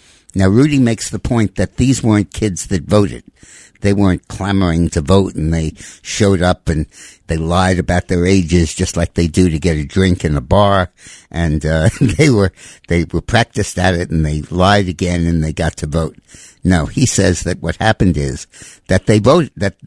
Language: English